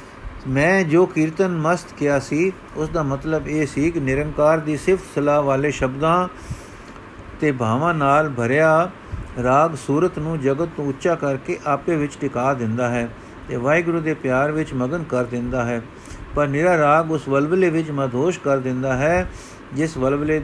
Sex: male